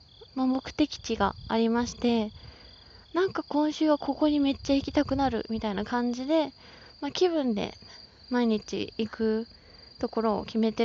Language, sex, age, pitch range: Japanese, female, 20-39, 225-295 Hz